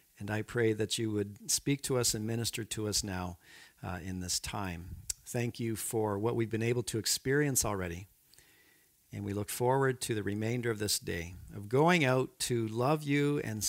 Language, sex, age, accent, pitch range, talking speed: English, male, 50-69, American, 110-150 Hz, 195 wpm